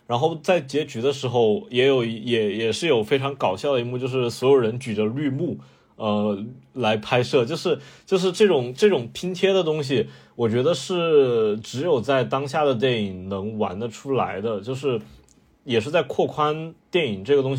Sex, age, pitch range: male, 20-39, 110-145 Hz